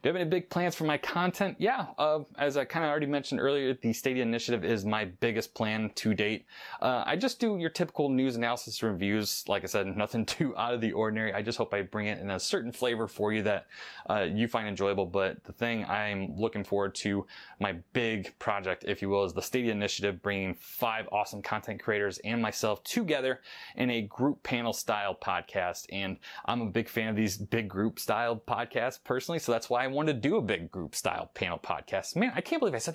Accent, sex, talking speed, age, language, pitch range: American, male, 225 wpm, 20-39, English, 100-130 Hz